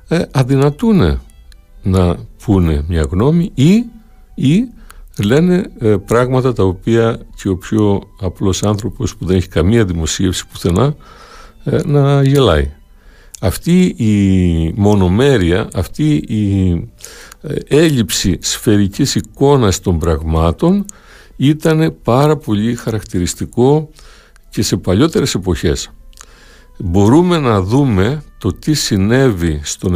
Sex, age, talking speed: male, 60-79, 100 wpm